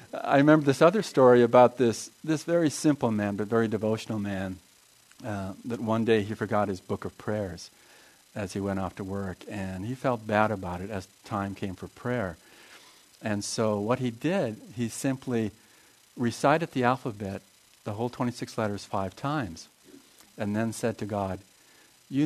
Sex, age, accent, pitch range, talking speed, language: male, 50-69, American, 105-130 Hz, 175 wpm, English